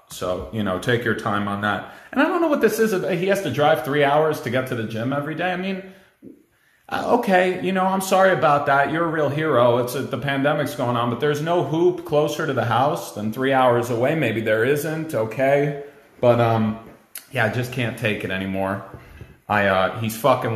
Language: English